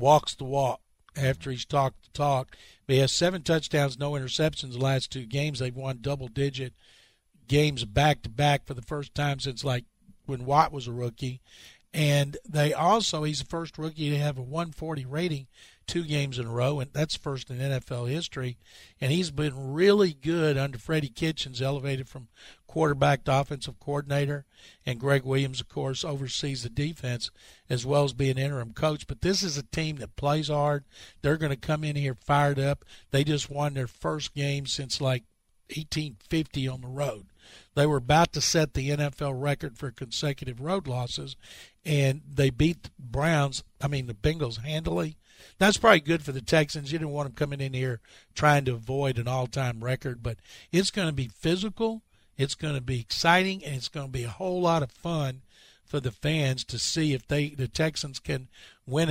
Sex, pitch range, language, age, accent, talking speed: male, 130-150 Hz, English, 50-69, American, 190 wpm